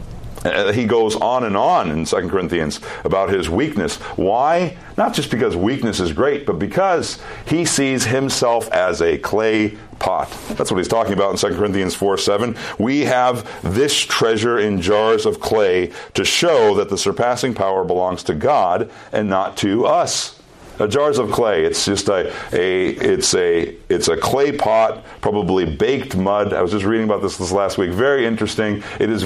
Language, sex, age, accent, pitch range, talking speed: English, male, 50-69, American, 105-145 Hz, 185 wpm